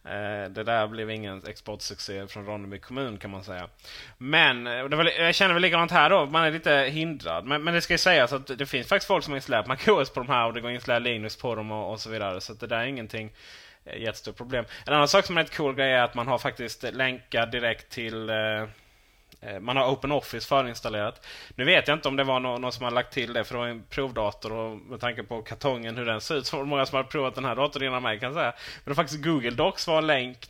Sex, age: male, 20-39